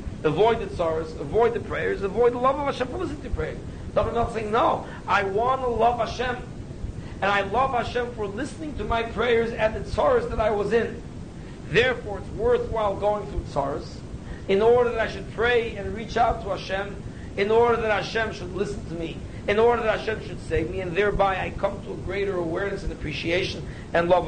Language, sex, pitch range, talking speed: English, male, 185-235 Hz, 205 wpm